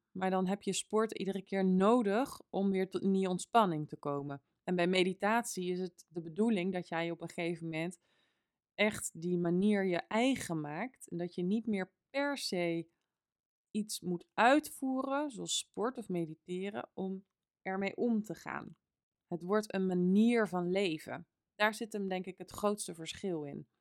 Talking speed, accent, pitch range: 170 wpm, Dutch, 175-230 Hz